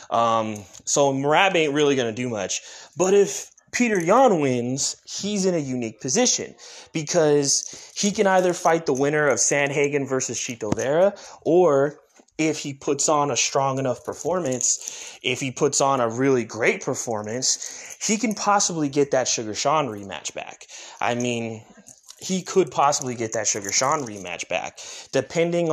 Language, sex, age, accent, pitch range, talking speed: English, male, 20-39, American, 120-155 Hz, 160 wpm